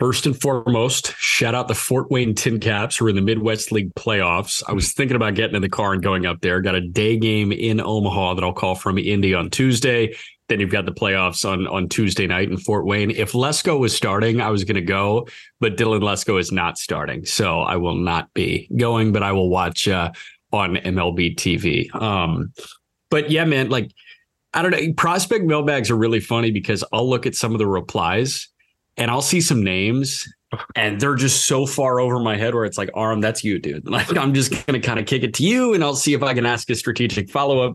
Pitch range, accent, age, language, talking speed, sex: 100-130 Hz, American, 30-49, English, 230 wpm, male